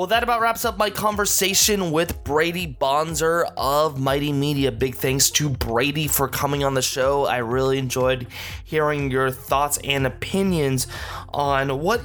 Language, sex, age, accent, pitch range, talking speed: English, male, 20-39, American, 125-155 Hz, 160 wpm